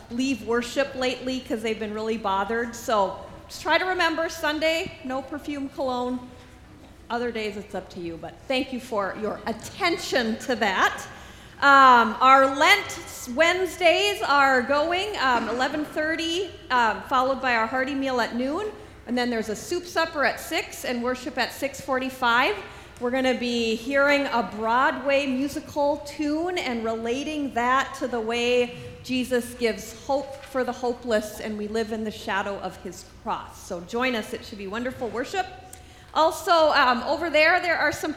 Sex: female